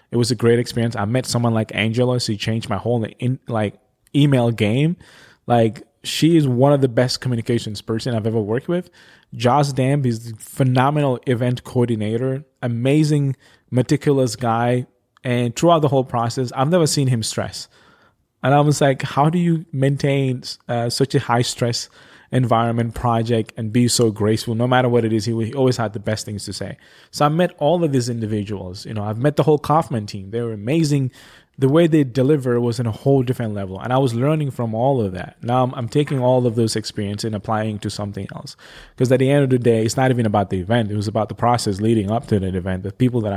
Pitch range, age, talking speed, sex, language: 110-135 Hz, 20-39, 220 wpm, male, English